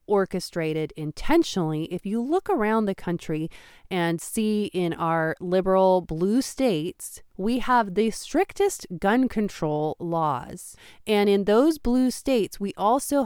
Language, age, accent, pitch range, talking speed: English, 30-49, American, 170-205 Hz, 130 wpm